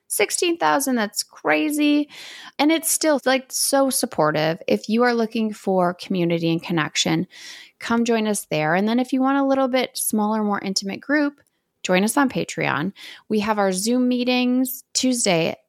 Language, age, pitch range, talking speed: English, 20-39, 185-255 Hz, 165 wpm